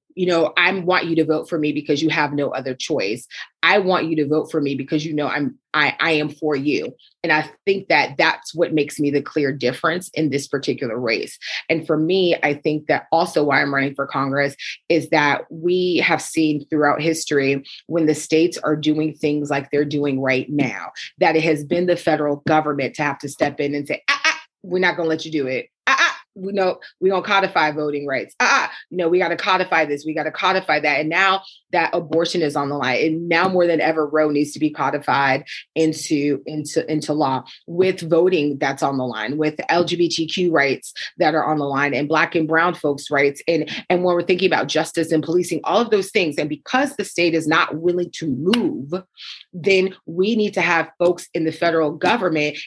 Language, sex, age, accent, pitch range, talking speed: English, female, 30-49, American, 150-175 Hz, 220 wpm